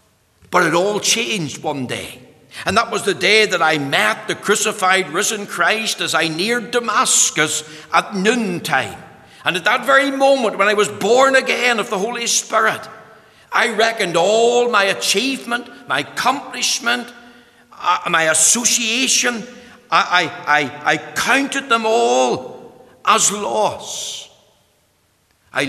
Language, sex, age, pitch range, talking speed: English, male, 60-79, 160-225 Hz, 135 wpm